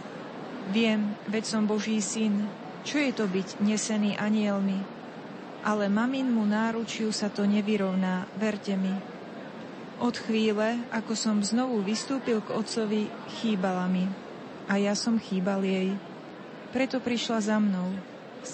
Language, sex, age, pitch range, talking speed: Slovak, female, 30-49, 200-230 Hz, 125 wpm